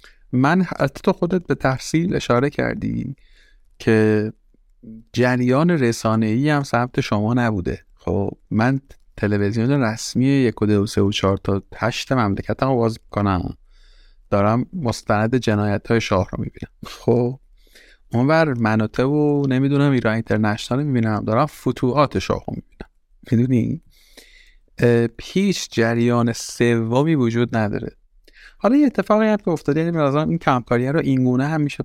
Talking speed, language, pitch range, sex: 135 wpm, Persian, 110-140 Hz, male